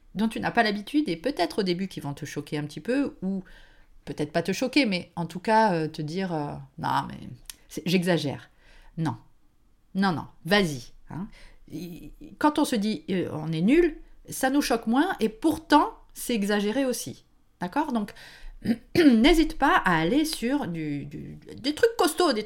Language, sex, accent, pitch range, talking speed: French, female, French, 170-275 Hz, 180 wpm